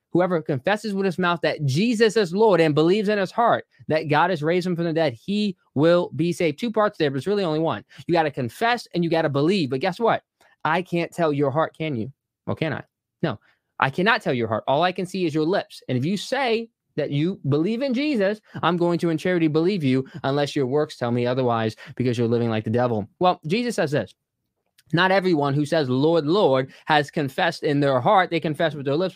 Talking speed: 240 wpm